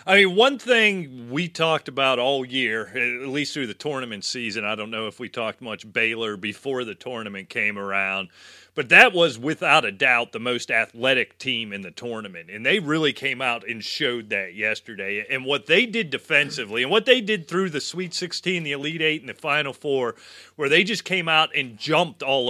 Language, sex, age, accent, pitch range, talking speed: English, male, 30-49, American, 120-155 Hz, 210 wpm